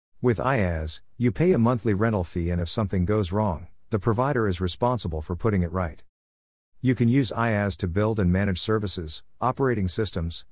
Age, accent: 50-69, American